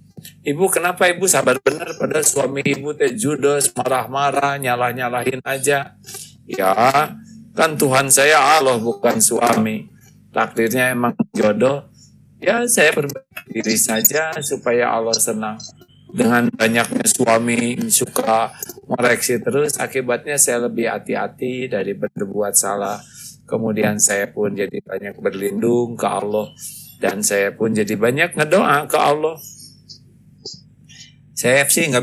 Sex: male